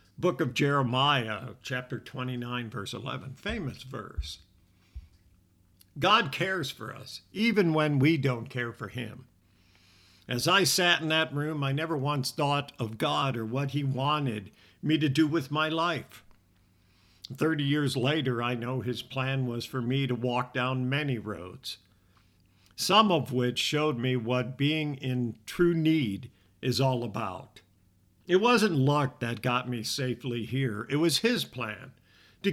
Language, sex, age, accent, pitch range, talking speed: English, male, 50-69, American, 110-145 Hz, 155 wpm